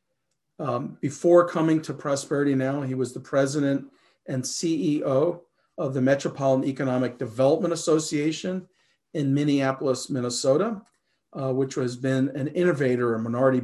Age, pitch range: 40-59, 130-160 Hz